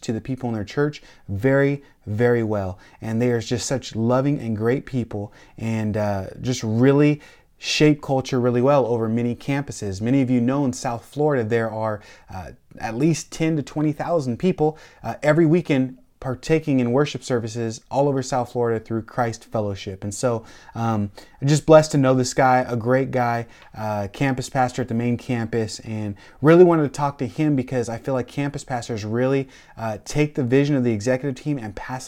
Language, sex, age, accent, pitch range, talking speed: English, male, 30-49, American, 110-130 Hz, 195 wpm